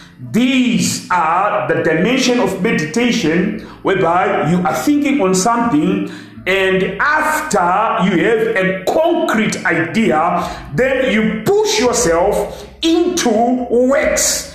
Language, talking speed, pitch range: English, 105 wpm, 175-250 Hz